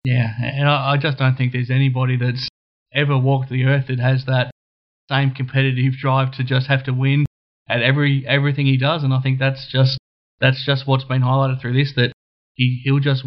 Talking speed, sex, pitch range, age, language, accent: 210 wpm, male, 130-145 Hz, 20-39, English, Australian